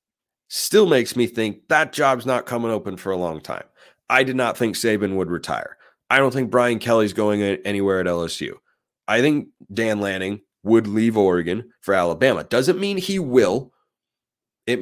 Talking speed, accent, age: 175 wpm, American, 30-49